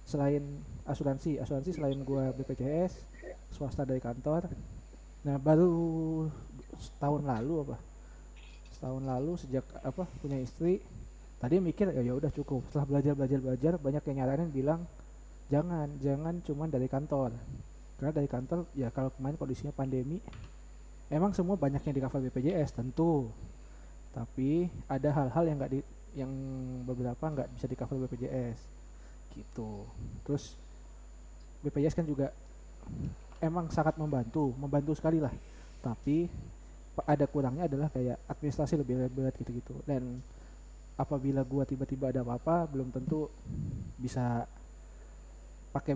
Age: 20-39